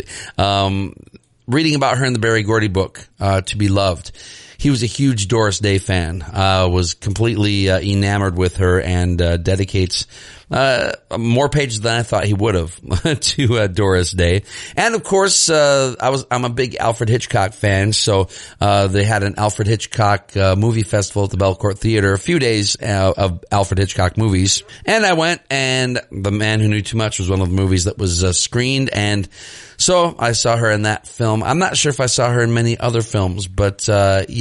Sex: male